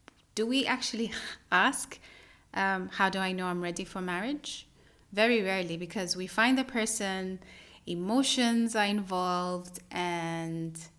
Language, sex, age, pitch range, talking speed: English, female, 30-49, 180-230 Hz, 130 wpm